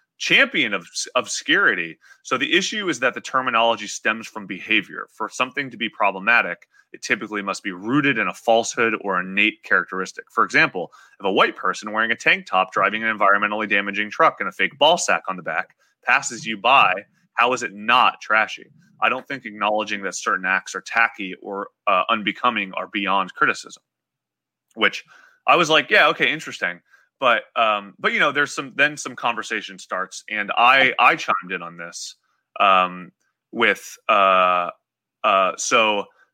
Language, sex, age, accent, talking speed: English, male, 30-49, American, 175 wpm